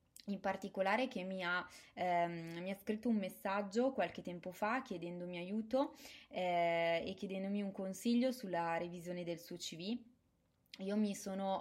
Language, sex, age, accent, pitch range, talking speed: Italian, female, 20-39, native, 180-205 Hz, 140 wpm